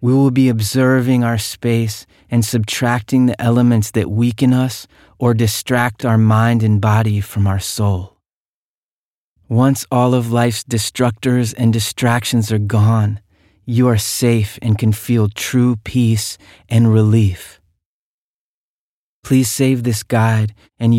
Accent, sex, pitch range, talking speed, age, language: American, male, 105-120 Hz, 130 wpm, 30-49, English